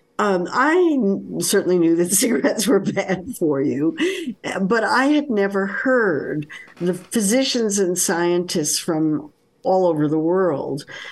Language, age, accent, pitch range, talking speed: English, 60-79, American, 165-255 Hz, 130 wpm